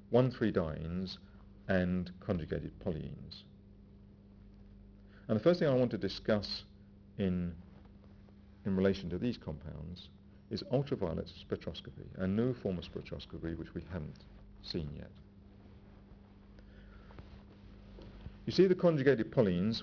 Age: 50-69